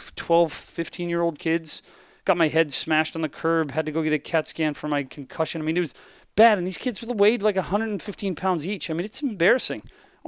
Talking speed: 220 wpm